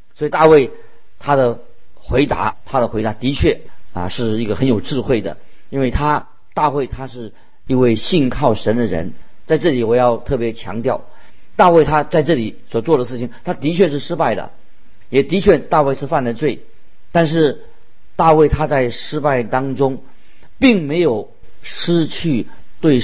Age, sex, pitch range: 50-69, male, 120-160 Hz